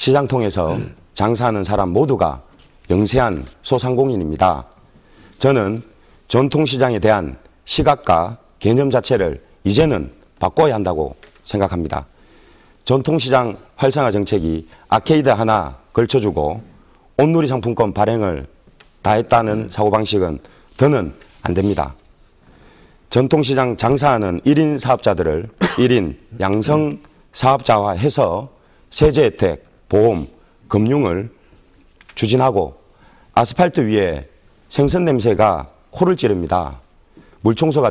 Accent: native